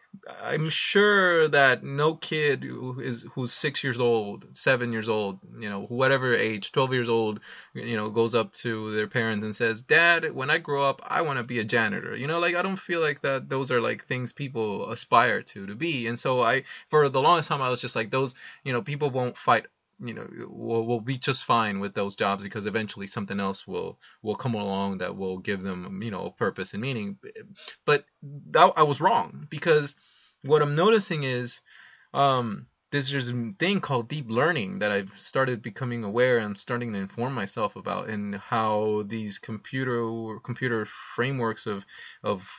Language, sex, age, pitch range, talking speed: English, male, 20-39, 110-150 Hz, 200 wpm